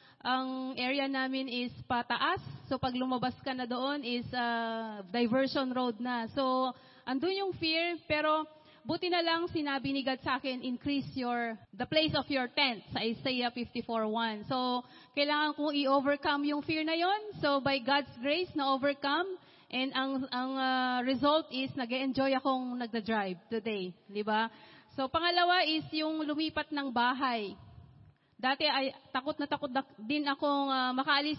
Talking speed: 155 wpm